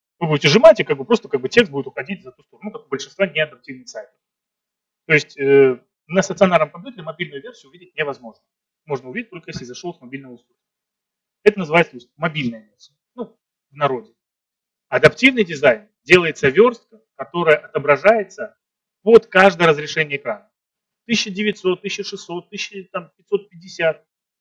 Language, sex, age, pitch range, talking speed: Russian, male, 30-49, 155-210 Hz, 150 wpm